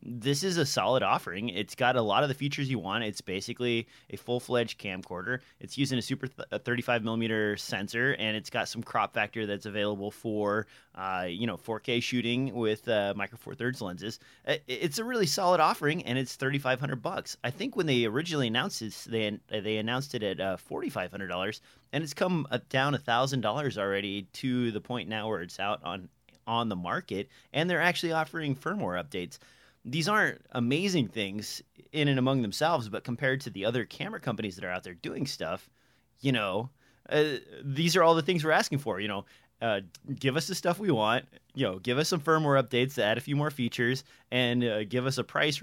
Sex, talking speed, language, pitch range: male, 205 wpm, English, 110-145 Hz